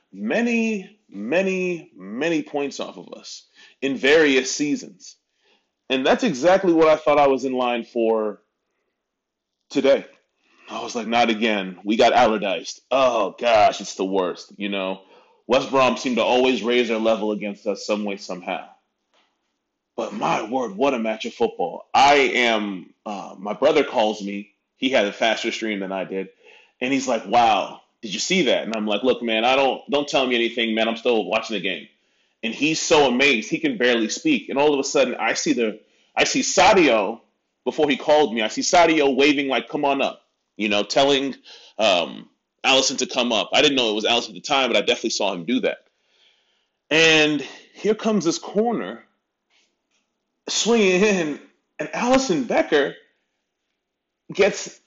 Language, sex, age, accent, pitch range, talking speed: English, male, 30-49, American, 110-165 Hz, 180 wpm